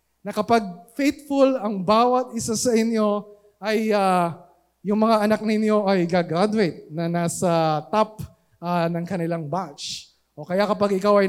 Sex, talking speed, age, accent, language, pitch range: male, 145 wpm, 20-39, native, Filipino, 150-210 Hz